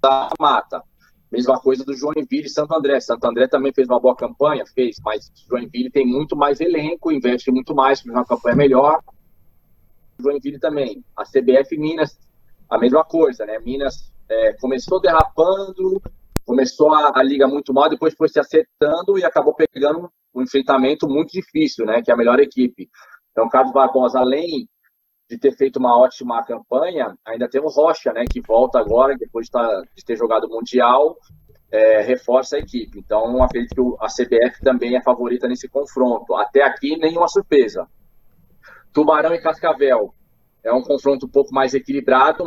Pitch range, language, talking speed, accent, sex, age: 125-150 Hz, Portuguese, 165 wpm, Brazilian, male, 20-39